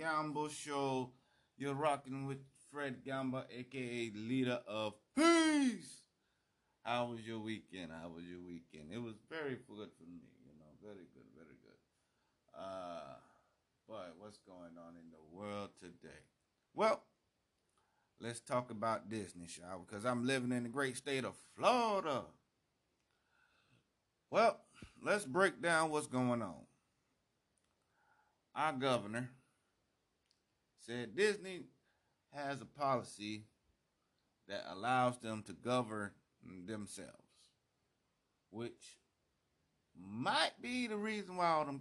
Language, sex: English, male